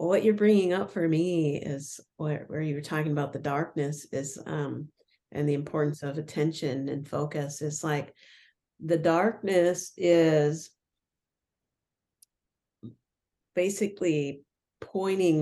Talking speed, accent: 120 wpm, American